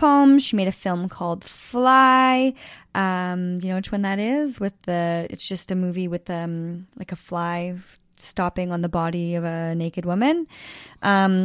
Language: English